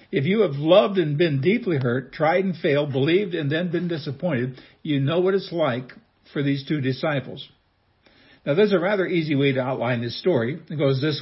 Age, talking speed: 60-79, 205 wpm